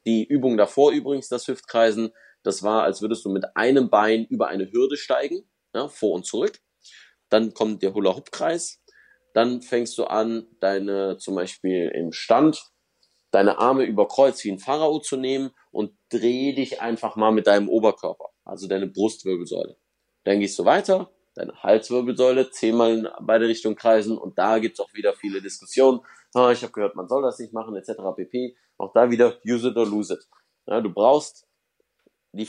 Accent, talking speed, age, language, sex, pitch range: German, 175 wpm, 30-49, German, male, 105-130 Hz